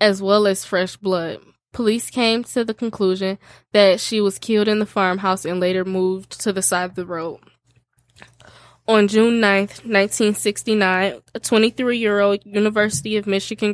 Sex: female